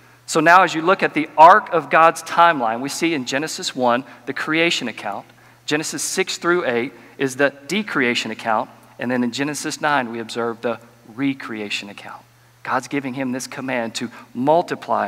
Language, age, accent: English, 40-59, American